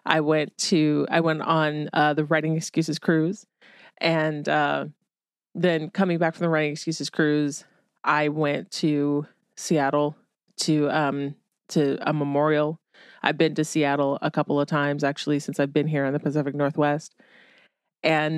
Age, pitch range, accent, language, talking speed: 30-49, 150-185 Hz, American, English, 155 wpm